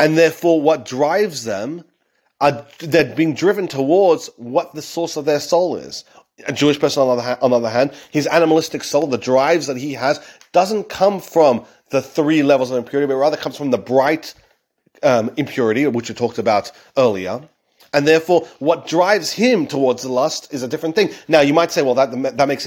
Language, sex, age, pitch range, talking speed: English, male, 40-59, 135-175 Hz, 195 wpm